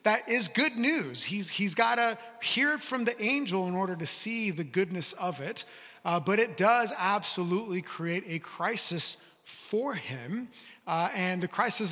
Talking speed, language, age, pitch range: 170 wpm, English, 30-49, 155-200 Hz